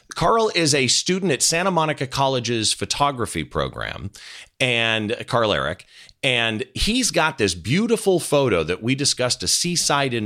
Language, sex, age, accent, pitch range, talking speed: English, male, 40-59, American, 95-155 Hz, 145 wpm